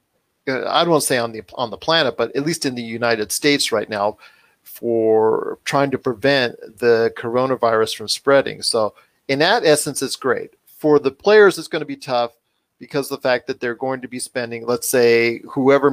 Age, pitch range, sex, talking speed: 40-59, 120-150 Hz, male, 200 wpm